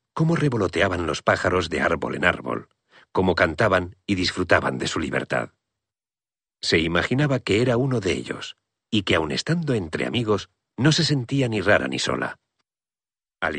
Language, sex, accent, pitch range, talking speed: Spanish, male, Spanish, 95-135 Hz, 160 wpm